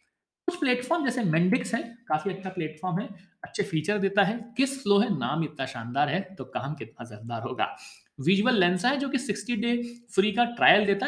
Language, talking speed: Hindi, 190 wpm